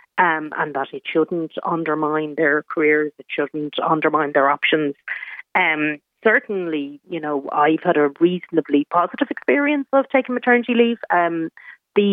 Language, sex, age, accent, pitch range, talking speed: English, female, 30-49, Irish, 150-180 Hz, 145 wpm